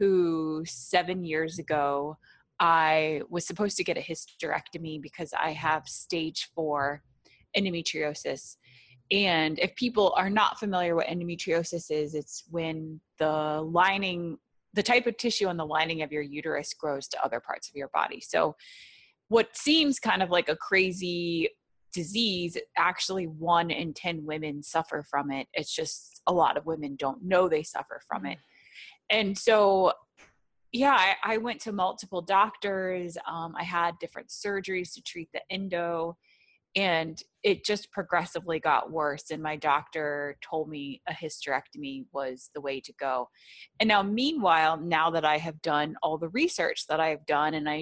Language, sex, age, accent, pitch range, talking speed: English, female, 20-39, American, 150-190 Hz, 160 wpm